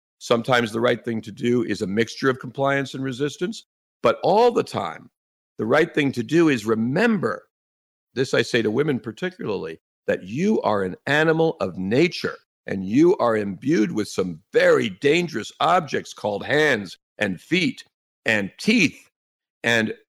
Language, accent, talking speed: English, American, 160 wpm